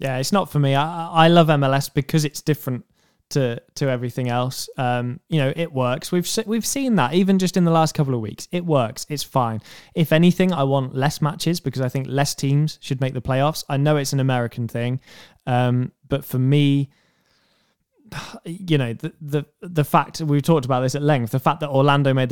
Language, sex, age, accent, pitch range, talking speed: English, male, 10-29, British, 130-160 Hz, 220 wpm